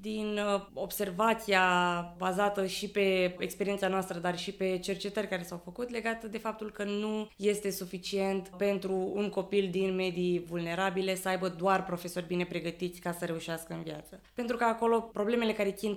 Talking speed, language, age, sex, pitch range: 165 wpm, English, 20-39, female, 185-220 Hz